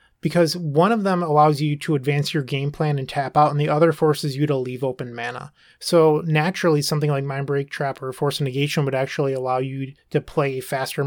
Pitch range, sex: 140-160 Hz, male